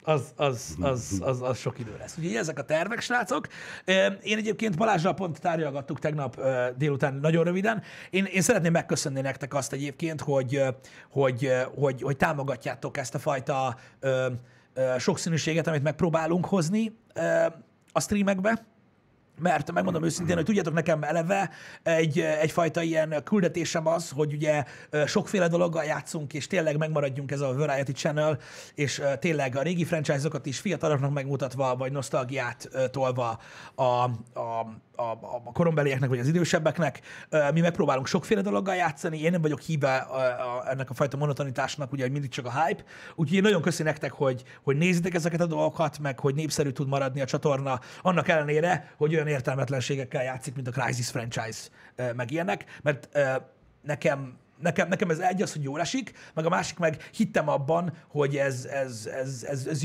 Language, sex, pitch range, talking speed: Hungarian, male, 135-165 Hz, 160 wpm